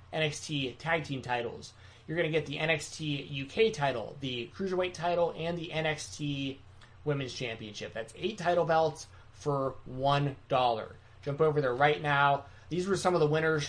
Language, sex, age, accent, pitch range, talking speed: English, male, 20-39, American, 120-155 Hz, 165 wpm